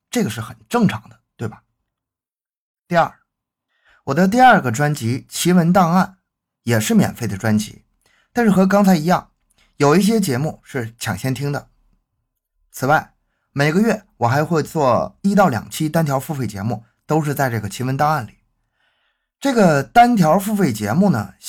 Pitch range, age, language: 115-185 Hz, 20-39, Chinese